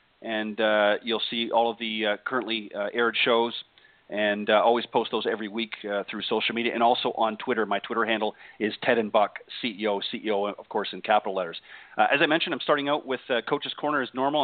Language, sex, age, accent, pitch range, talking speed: English, male, 40-59, American, 110-130 Hz, 225 wpm